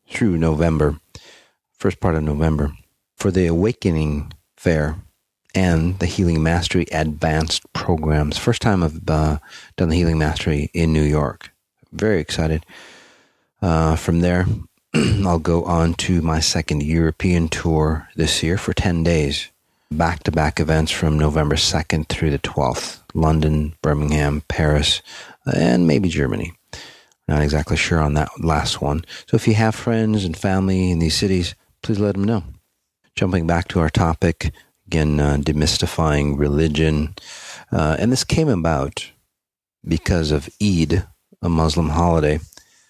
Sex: male